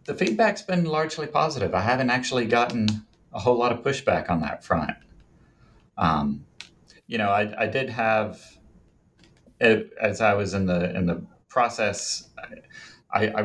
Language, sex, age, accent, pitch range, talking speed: English, male, 40-59, American, 90-115 Hz, 155 wpm